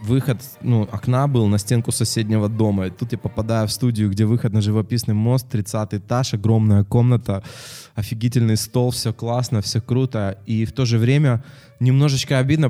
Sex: male